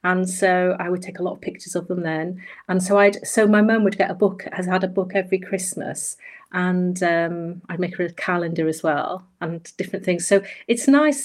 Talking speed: 230 wpm